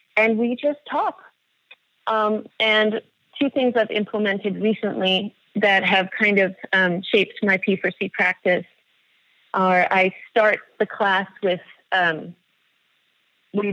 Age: 30-49